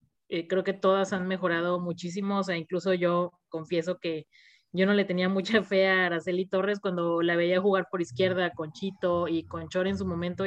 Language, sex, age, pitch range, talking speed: Spanish, female, 30-49, 180-200 Hz, 200 wpm